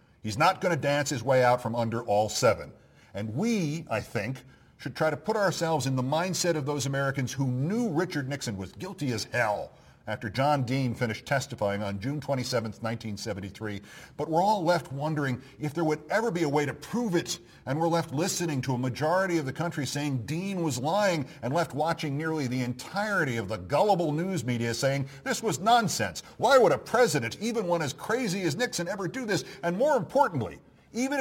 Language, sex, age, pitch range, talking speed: English, male, 50-69, 110-170 Hz, 200 wpm